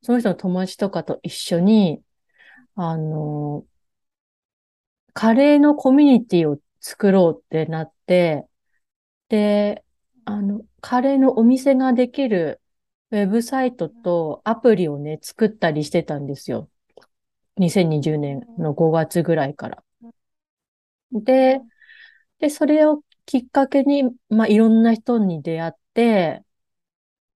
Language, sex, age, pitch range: Japanese, female, 30-49, 160-235 Hz